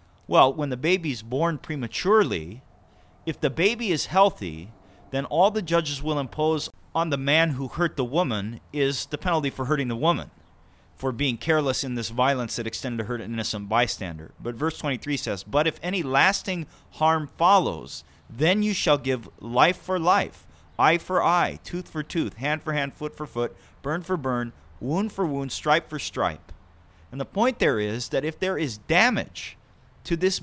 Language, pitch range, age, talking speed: English, 120-170 Hz, 30-49, 185 wpm